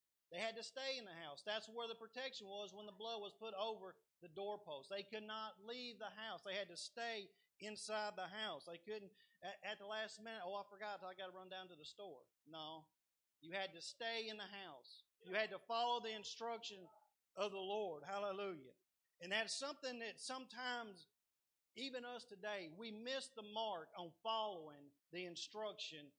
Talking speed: 190 wpm